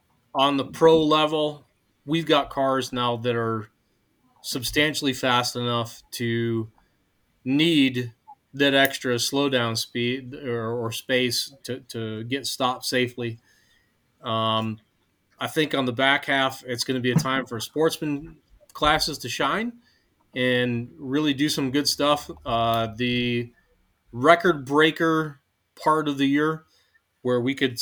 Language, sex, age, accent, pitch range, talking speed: English, male, 30-49, American, 115-140 Hz, 135 wpm